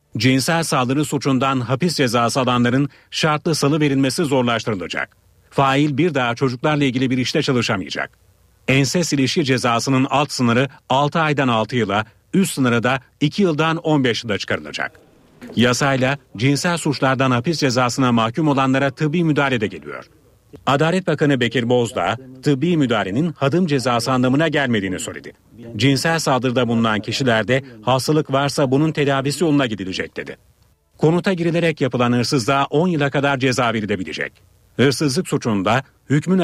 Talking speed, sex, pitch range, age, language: 130 wpm, male, 125-150 Hz, 40-59, Turkish